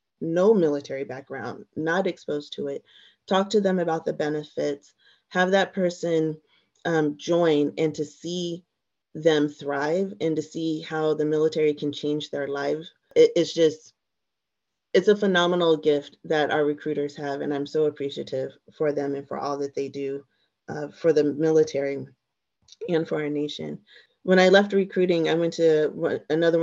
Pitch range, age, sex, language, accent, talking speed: 150-175 Hz, 30-49, female, English, American, 160 wpm